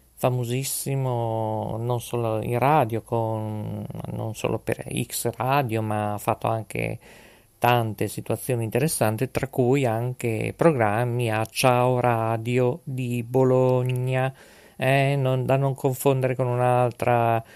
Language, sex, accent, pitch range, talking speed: Italian, male, native, 110-135 Hz, 115 wpm